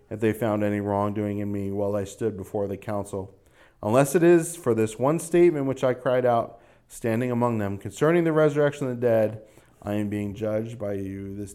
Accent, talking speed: American, 210 wpm